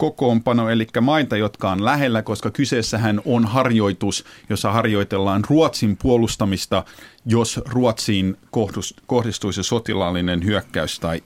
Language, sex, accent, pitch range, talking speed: Finnish, male, native, 95-120 Hz, 105 wpm